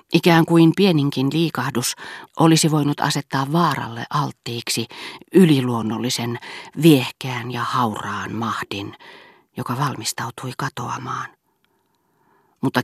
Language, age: Finnish, 40-59